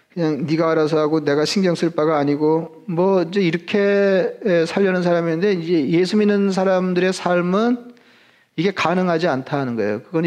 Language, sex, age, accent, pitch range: Korean, male, 40-59, native, 155-190 Hz